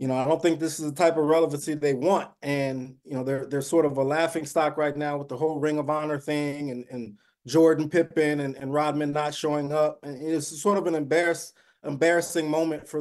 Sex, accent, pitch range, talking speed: male, American, 155-190 Hz, 235 wpm